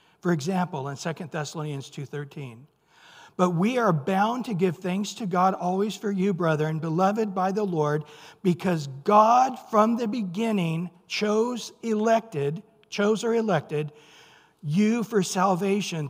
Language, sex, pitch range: English, male, 165-215 Hz